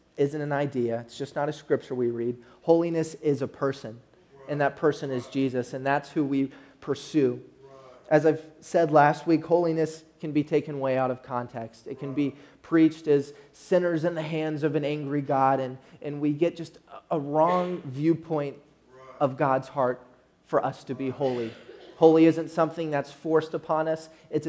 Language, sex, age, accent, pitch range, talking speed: English, male, 30-49, American, 135-155 Hz, 180 wpm